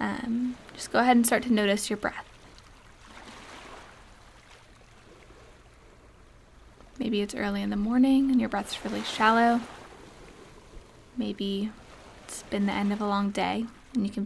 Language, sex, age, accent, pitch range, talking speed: English, female, 10-29, American, 205-235 Hz, 140 wpm